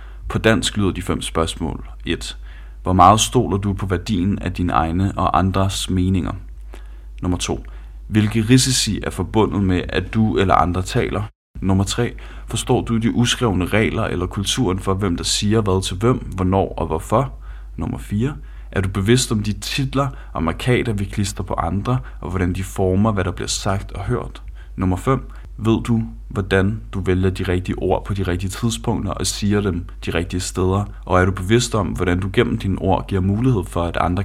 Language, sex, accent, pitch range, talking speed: Danish, male, native, 90-110 Hz, 185 wpm